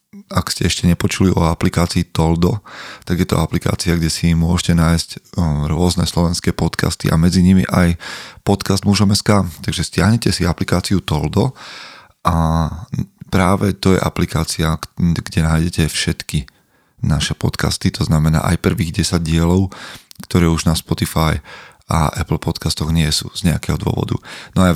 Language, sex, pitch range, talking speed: Slovak, male, 80-95 Hz, 150 wpm